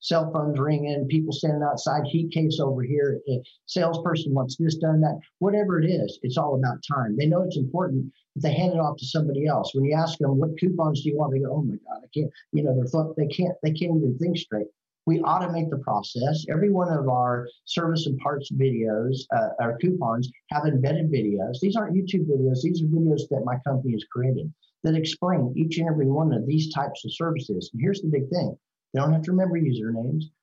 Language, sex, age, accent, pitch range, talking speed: English, male, 50-69, American, 130-160 Hz, 225 wpm